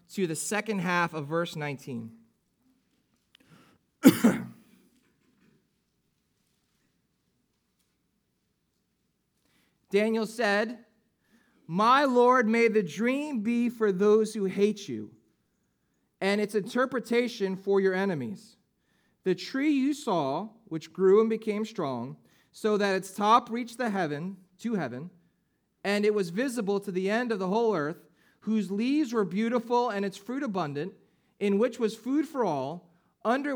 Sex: male